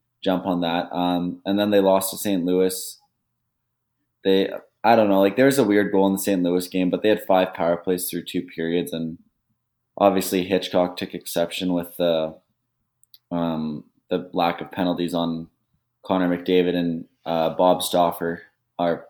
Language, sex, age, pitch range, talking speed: English, male, 20-39, 85-100 Hz, 175 wpm